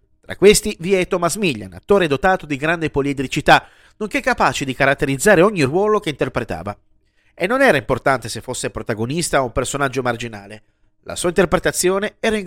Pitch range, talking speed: 125-185 Hz, 170 wpm